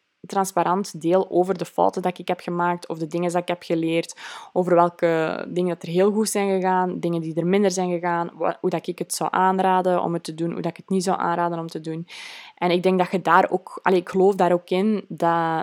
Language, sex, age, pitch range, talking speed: Dutch, female, 20-39, 175-205 Hz, 240 wpm